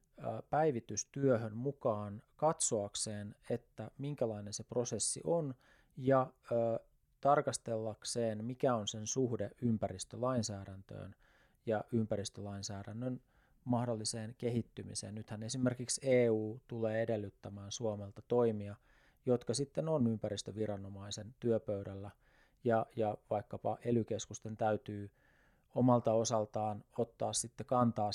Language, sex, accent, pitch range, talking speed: Finnish, male, native, 105-125 Hz, 85 wpm